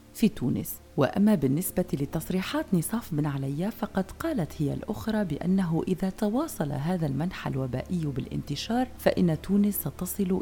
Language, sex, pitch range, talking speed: Arabic, female, 145-205 Hz, 125 wpm